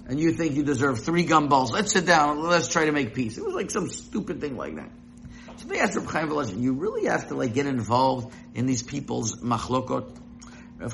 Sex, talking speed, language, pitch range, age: male, 225 wpm, English, 130-180 Hz, 50-69